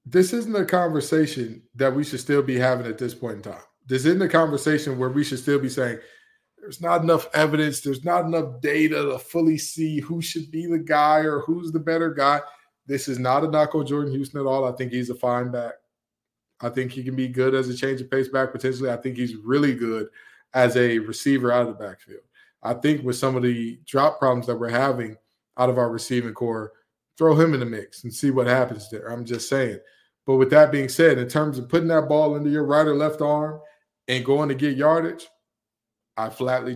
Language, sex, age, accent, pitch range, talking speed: English, male, 20-39, American, 125-150 Hz, 225 wpm